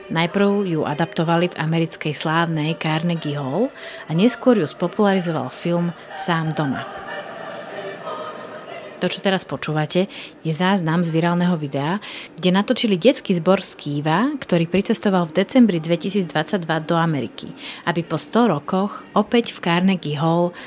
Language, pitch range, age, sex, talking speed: Slovak, 160-195 Hz, 30-49, female, 130 wpm